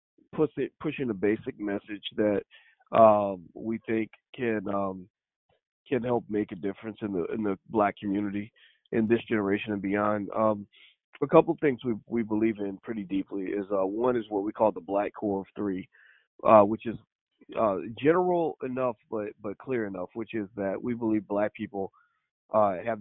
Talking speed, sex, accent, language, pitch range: 185 wpm, male, American, English, 100-115 Hz